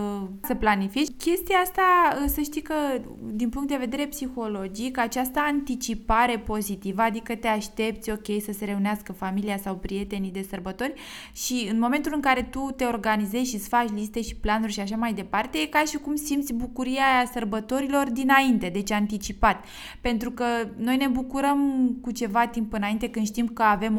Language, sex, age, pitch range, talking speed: Romanian, female, 20-39, 205-270 Hz, 170 wpm